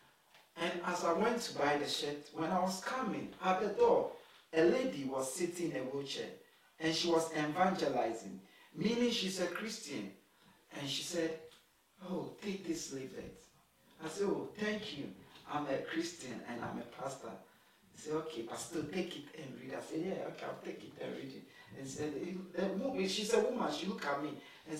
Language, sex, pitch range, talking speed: English, male, 165-240 Hz, 200 wpm